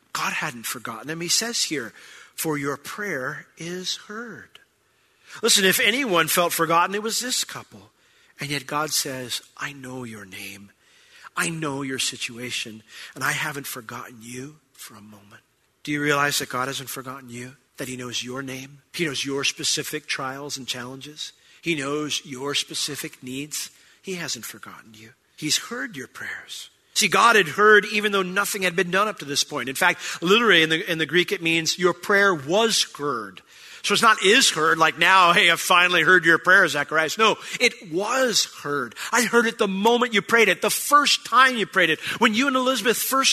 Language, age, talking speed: English, 40-59, 190 wpm